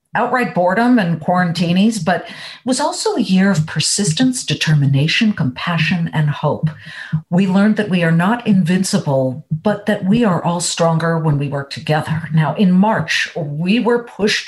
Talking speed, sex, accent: 160 wpm, female, American